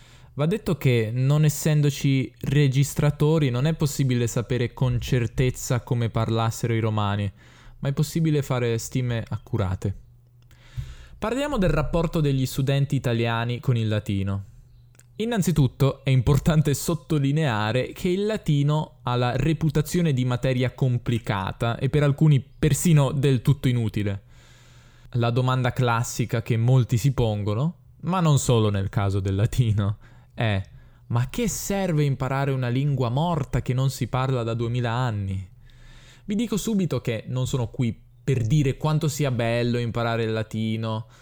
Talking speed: 140 wpm